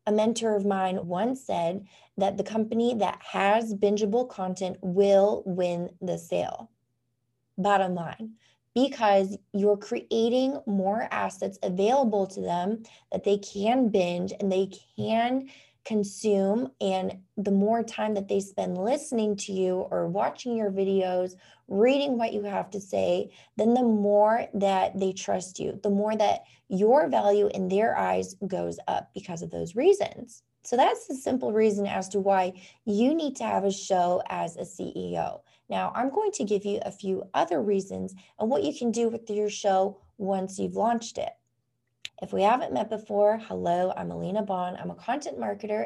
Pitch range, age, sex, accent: 185-220 Hz, 20-39, female, American